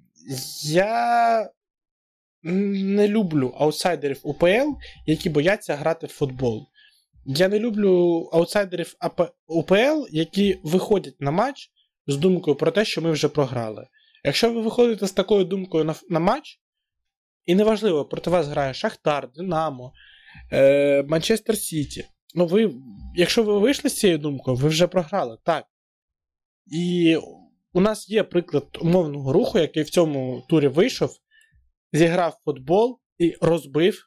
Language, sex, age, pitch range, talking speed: Ukrainian, male, 20-39, 145-195 Hz, 125 wpm